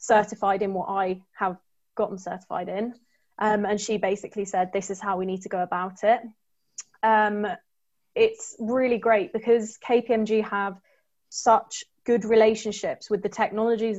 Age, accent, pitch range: 20-39, British, 195-220 Hz